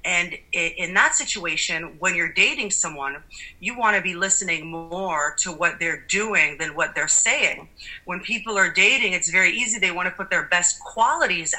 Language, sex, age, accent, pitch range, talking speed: English, female, 30-49, American, 170-195 Hz, 185 wpm